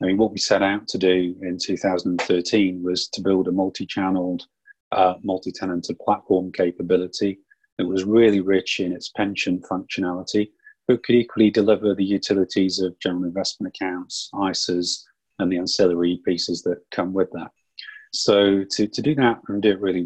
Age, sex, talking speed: 30-49, male, 160 wpm